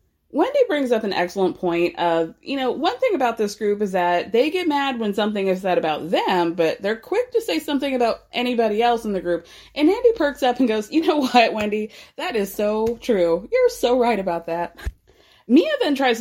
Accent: American